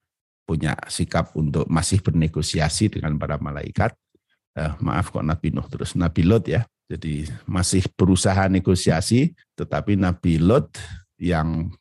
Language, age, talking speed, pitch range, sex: Indonesian, 50-69, 125 wpm, 80-100 Hz, male